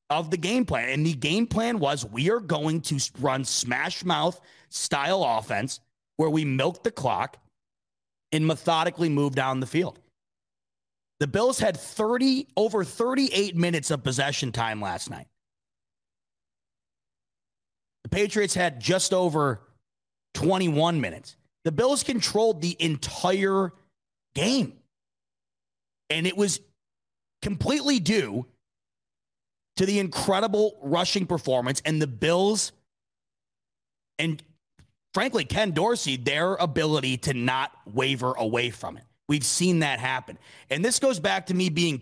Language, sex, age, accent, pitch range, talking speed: English, male, 30-49, American, 125-185 Hz, 130 wpm